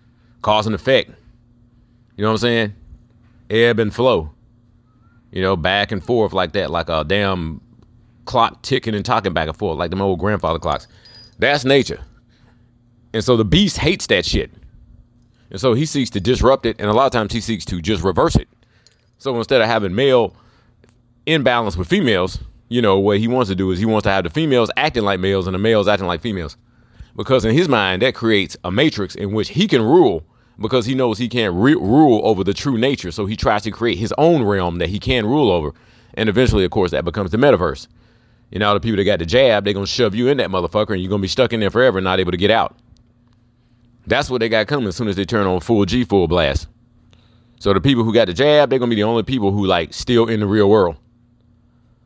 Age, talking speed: 30-49, 235 wpm